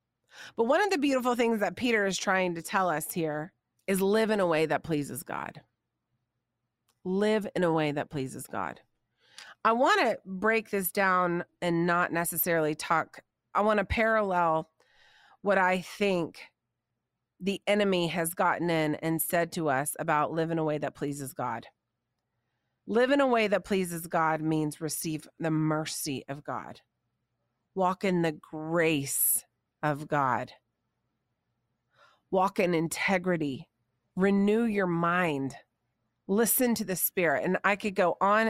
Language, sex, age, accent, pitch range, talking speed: English, female, 30-49, American, 150-195 Hz, 155 wpm